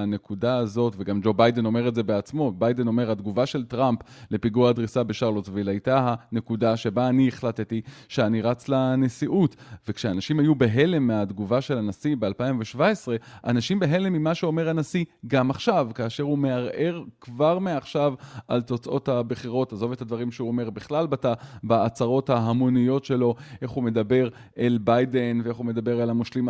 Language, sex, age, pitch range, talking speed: Hebrew, male, 20-39, 115-145 Hz, 150 wpm